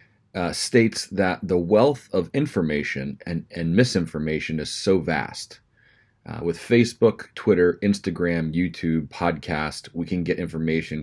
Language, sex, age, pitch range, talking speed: English, male, 30-49, 80-100 Hz, 130 wpm